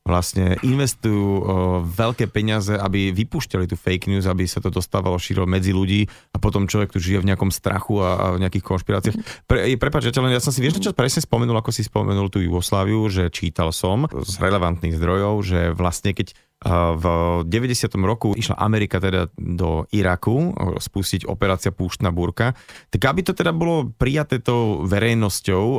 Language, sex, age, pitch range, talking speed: Slovak, male, 30-49, 90-115 Hz, 175 wpm